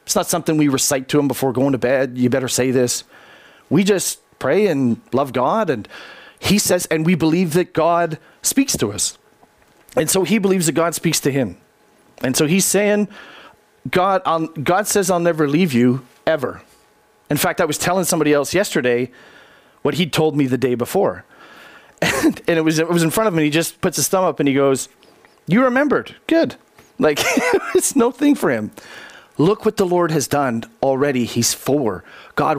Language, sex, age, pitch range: English, male, 30-49, 135-180 Hz